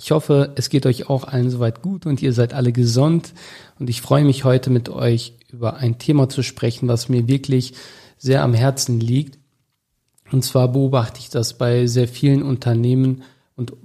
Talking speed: 185 wpm